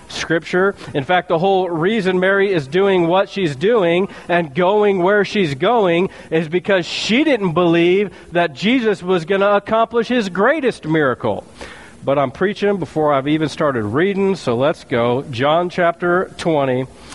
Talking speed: 160 wpm